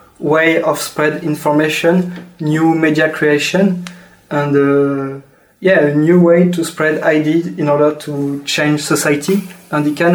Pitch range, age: 145-160 Hz, 20-39